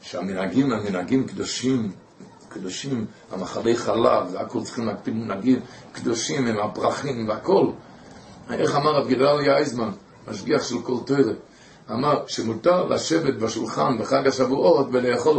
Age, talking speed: 60-79, 115 wpm